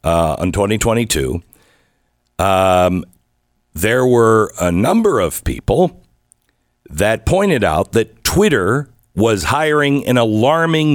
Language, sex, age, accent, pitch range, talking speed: English, male, 50-69, American, 85-120 Hz, 105 wpm